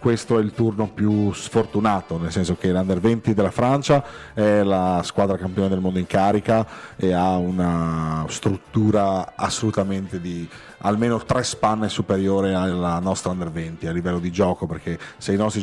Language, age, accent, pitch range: Italian, 40-59, native, 90-110 Hz